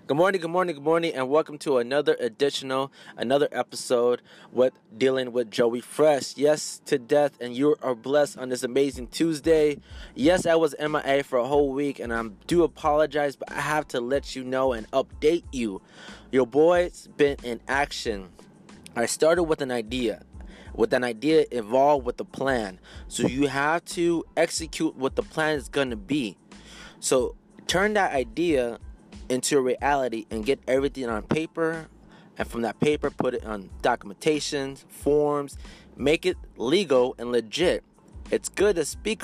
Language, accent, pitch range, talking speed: English, American, 125-160 Hz, 165 wpm